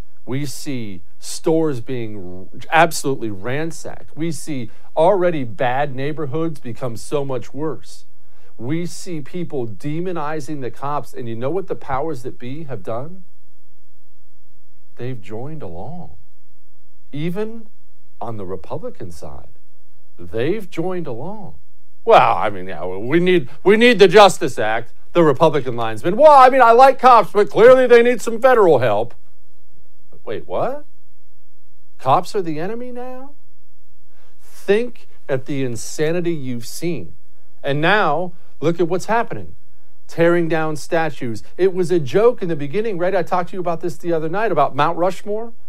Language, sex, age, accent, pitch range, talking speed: English, male, 50-69, American, 115-185 Hz, 145 wpm